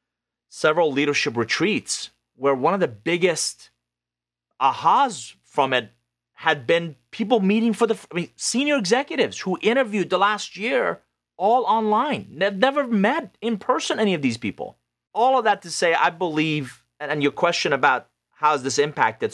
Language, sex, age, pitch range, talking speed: English, male, 30-49, 115-160 Hz, 150 wpm